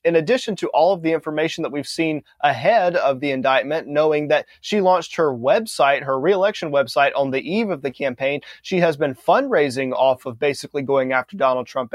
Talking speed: 200 wpm